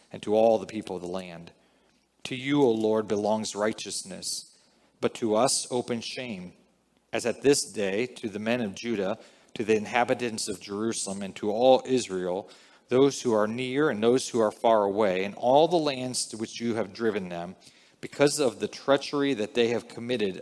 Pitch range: 100-125 Hz